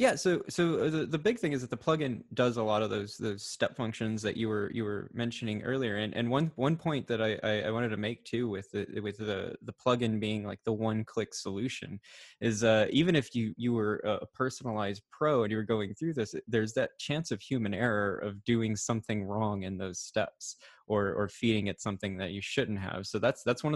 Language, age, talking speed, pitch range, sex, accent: English, 20-39, 235 wpm, 105-130 Hz, male, American